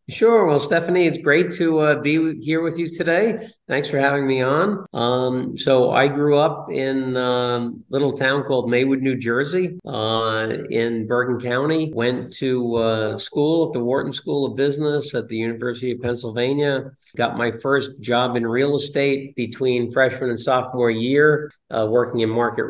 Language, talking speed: English, 170 wpm